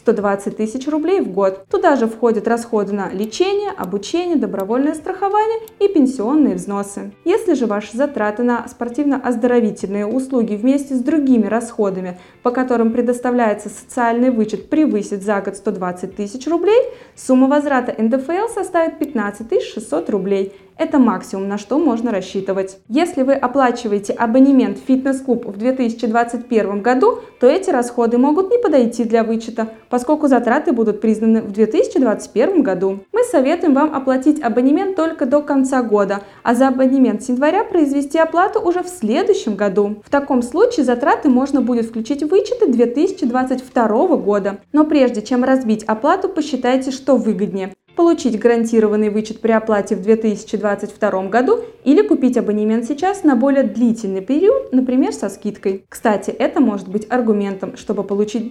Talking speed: 145 wpm